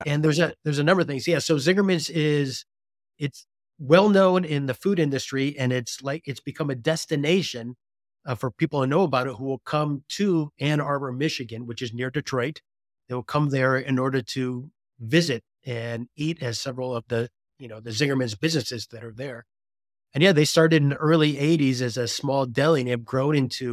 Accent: American